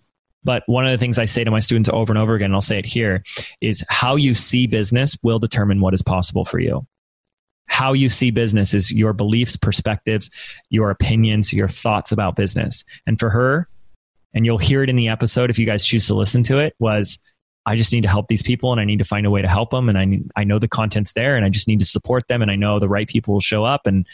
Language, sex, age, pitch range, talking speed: English, male, 20-39, 105-125 Hz, 265 wpm